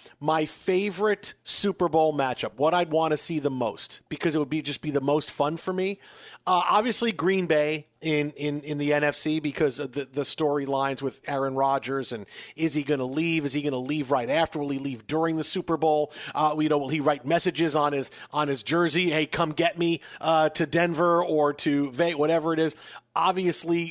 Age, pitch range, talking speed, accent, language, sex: 40-59, 150-200 Hz, 215 wpm, American, English, male